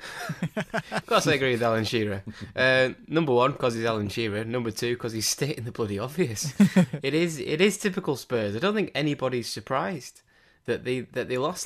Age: 20-39